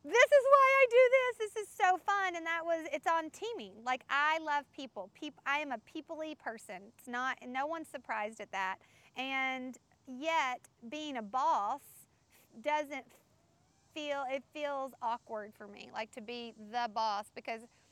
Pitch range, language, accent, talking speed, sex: 240-305 Hz, English, American, 165 wpm, female